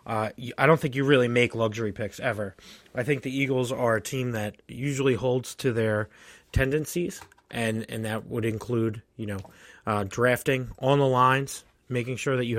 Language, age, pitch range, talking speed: English, 30-49, 115-135 Hz, 185 wpm